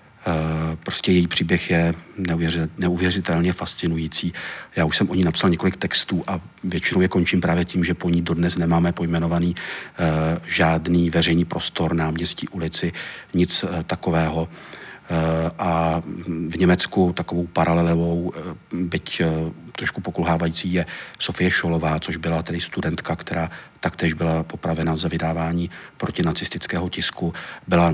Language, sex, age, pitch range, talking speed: Czech, male, 40-59, 80-85 Hz, 125 wpm